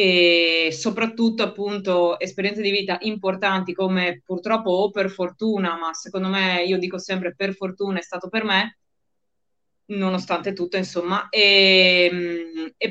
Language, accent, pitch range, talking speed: Italian, native, 170-200 Hz, 135 wpm